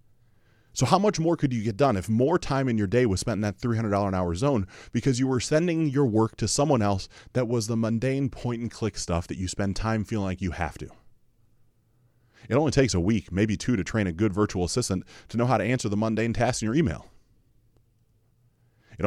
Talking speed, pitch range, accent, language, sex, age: 215 wpm, 105-120 Hz, American, English, male, 30-49